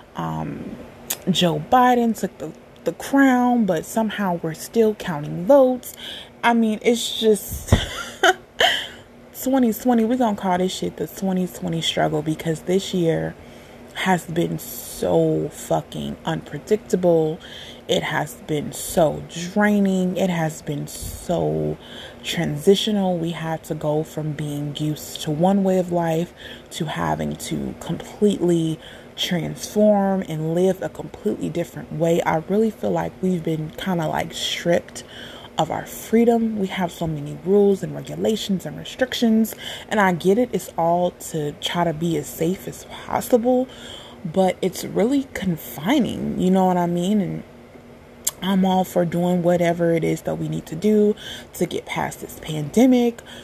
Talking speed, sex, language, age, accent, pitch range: 145 wpm, female, English, 20-39, American, 160-215 Hz